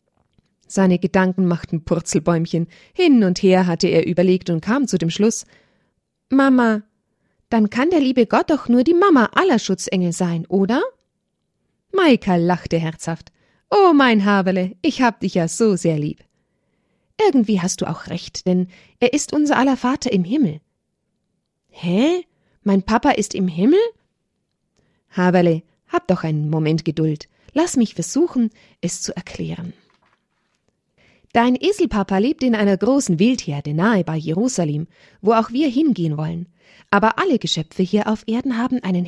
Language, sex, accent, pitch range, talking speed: German, female, German, 175-250 Hz, 145 wpm